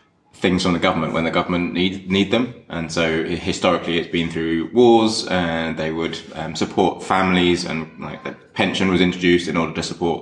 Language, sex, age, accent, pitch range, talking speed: English, male, 20-39, British, 80-85 Hz, 195 wpm